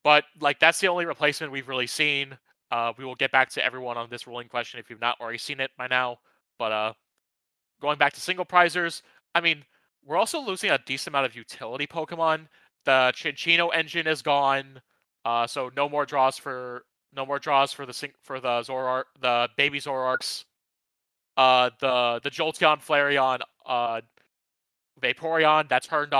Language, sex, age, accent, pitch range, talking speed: English, male, 20-39, American, 125-155 Hz, 180 wpm